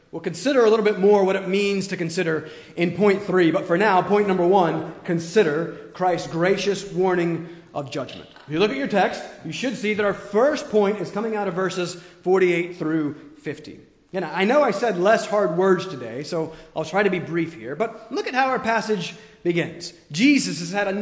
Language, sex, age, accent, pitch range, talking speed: English, male, 30-49, American, 180-245 Hz, 210 wpm